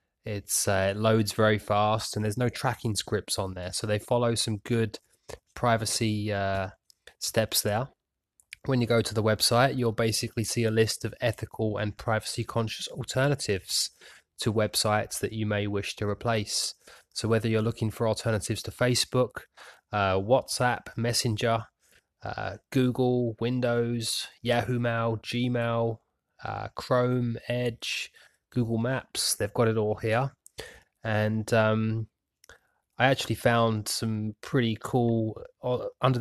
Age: 20-39